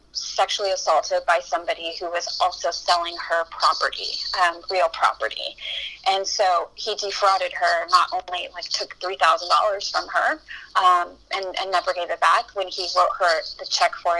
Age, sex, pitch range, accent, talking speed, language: 30-49, female, 175-210 Hz, American, 165 wpm, English